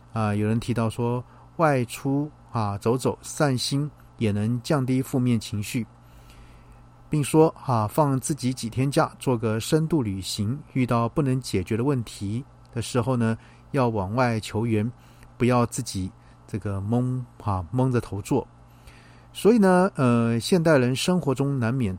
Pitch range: 105-130 Hz